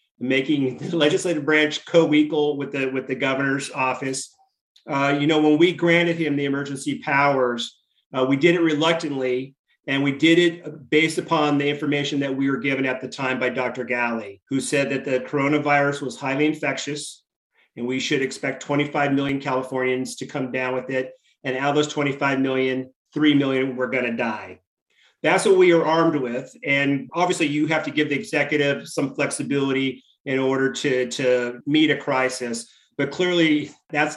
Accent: American